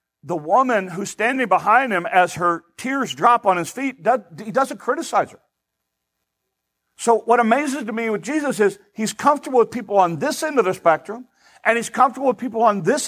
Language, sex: English, male